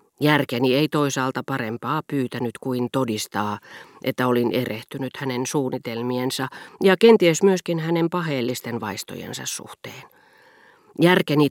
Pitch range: 120-165 Hz